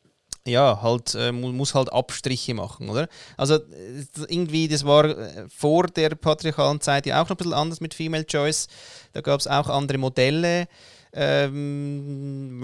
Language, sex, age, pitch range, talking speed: German, male, 30-49, 130-155 Hz, 150 wpm